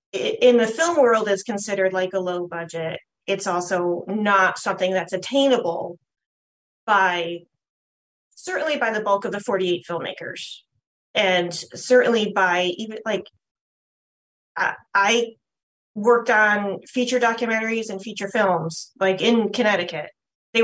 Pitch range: 190-245 Hz